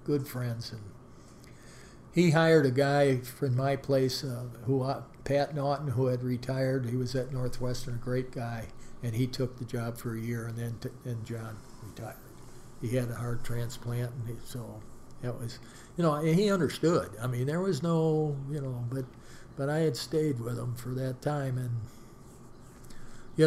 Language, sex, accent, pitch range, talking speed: English, male, American, 120-140 Hz, 185 wpm